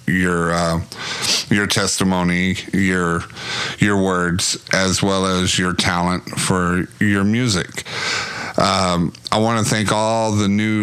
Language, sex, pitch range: English, male, 90-105 Hz